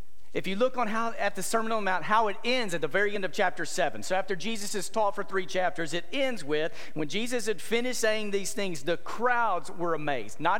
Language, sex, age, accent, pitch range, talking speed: English, male, 40-59, American, 145-200 Hz, 250 wpm